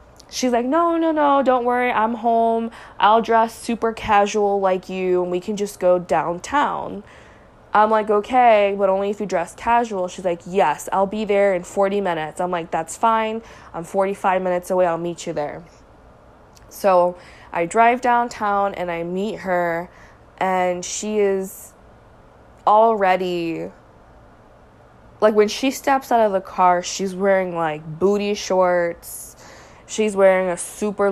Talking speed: 155 wpm